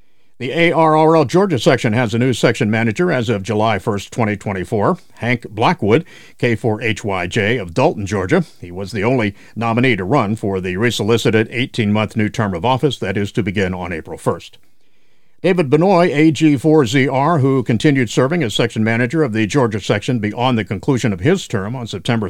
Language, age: English, 50-69